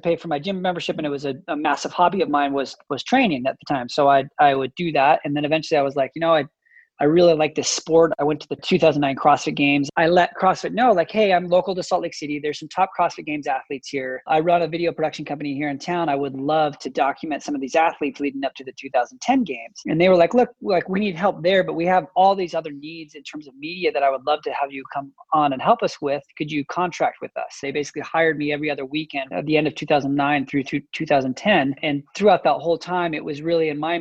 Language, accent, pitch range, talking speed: English, American, 140-170 Hz, 270 wpm